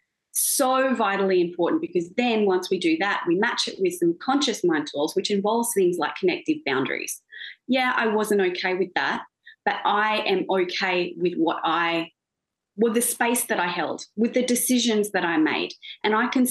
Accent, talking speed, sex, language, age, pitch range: Australian, 185 wpm, female, English, 30-49, 190-265 Hz